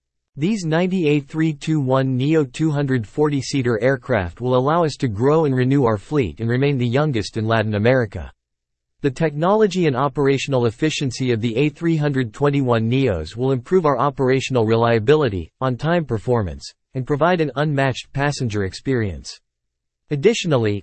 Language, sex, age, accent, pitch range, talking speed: English, male, 40-59, American, 115-150 Hz, 125 wpm